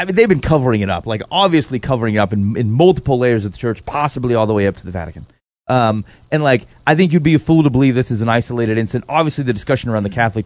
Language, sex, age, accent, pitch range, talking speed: English, male, 30-49, American, 110-155 Hz, 280 wpm